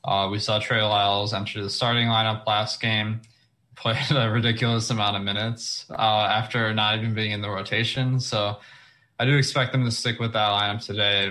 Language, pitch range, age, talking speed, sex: English, 100-115 Hz, 20-39, 190 wpm, male